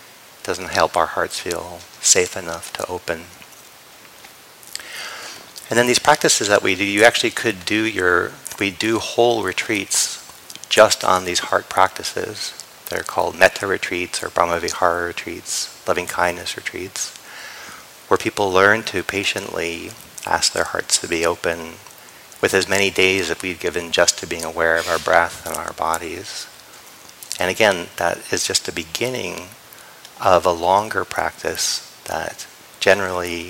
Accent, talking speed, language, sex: American, 145 wpm, English, male